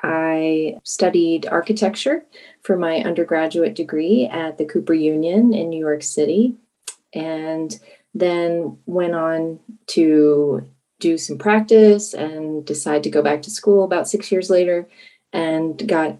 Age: 30-49